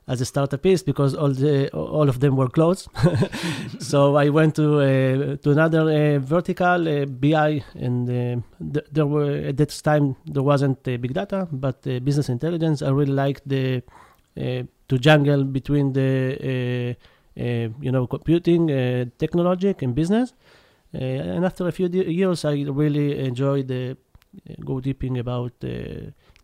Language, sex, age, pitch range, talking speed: Hebrew, male, 30-49, 130-150 Hz, 165 wpm